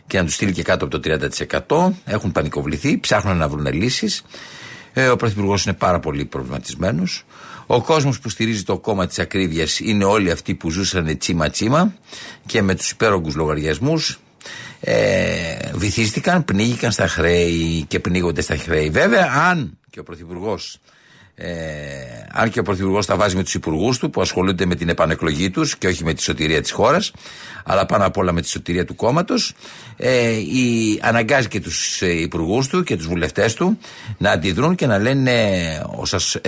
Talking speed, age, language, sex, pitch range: 170 wpm, 60-79, Greek, male, 85-115 Hz